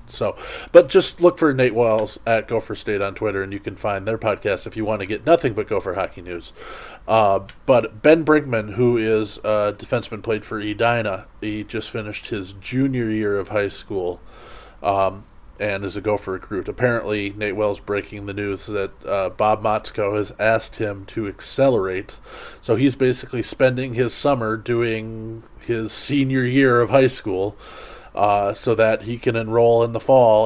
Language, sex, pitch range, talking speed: English, male, 105-125 Hz, 180 wpm